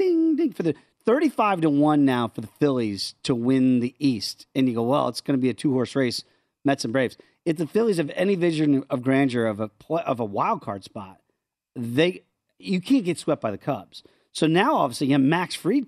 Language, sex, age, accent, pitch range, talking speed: English, male, 40-59, American, 125-165 Hz, 230 wpm